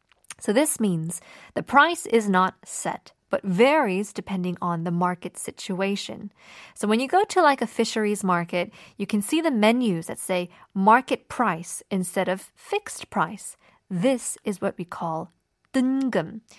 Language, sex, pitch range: Korean, female, 185-265 Hz